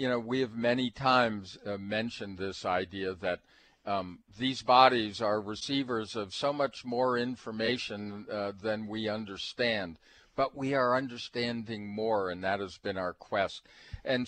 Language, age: English, 50-69